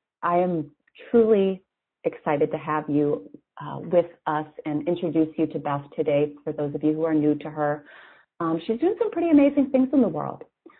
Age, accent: 30-49, American